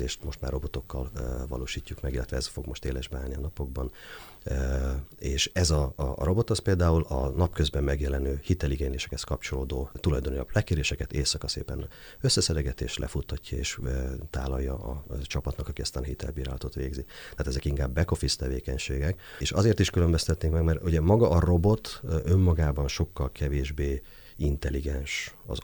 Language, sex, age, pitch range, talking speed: Hungarian, male, 40-59, 70-80 Hz, 145 wpm